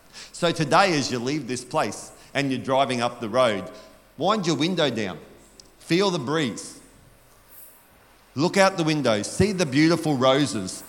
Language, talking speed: English, 155 wpm